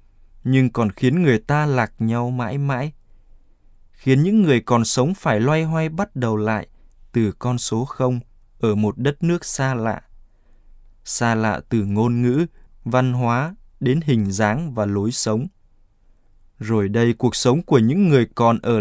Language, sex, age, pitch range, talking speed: Vietnamese, male, 20-39, 100-130 Hz, 165 wpm